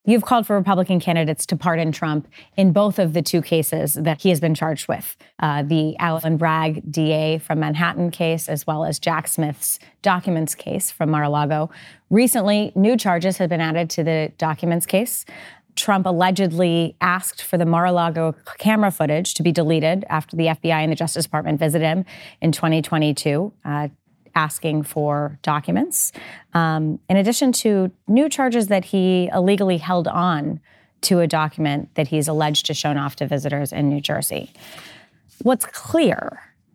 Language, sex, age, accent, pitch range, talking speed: English, female, 30-49, American, 155-185 Hz, 160 wpm